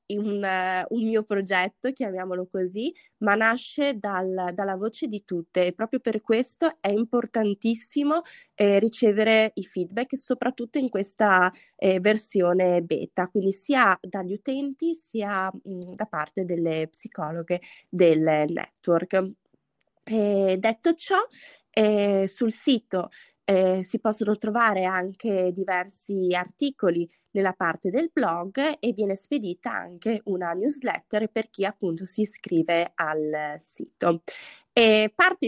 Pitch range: 185-230 Hz